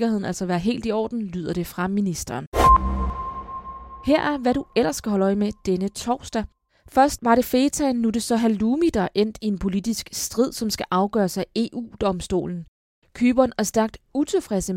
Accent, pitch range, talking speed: native, 190-235 Hz, 170 wpm